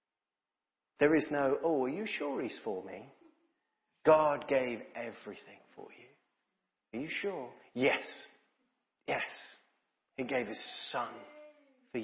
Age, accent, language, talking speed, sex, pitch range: 40-59, British, English, 125 wpm, male, 120-160 Hz